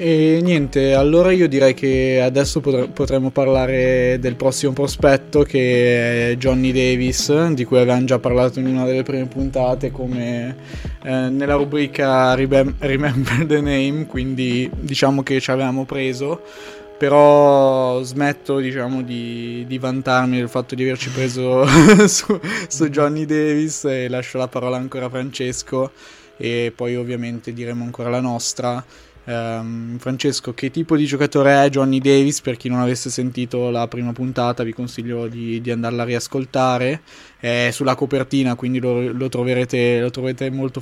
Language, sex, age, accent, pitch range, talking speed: Italian, male, 20-39, native, 125-140 Hz, 150 wpm